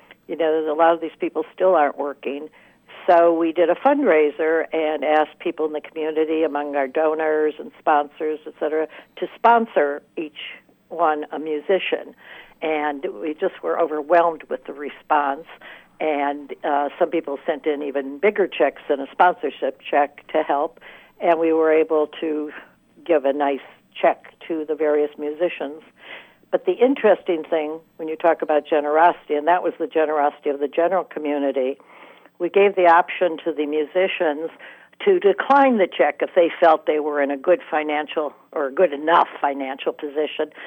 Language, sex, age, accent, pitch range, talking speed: English, female, 60-79, American, 145-170 Hz, 165 wpm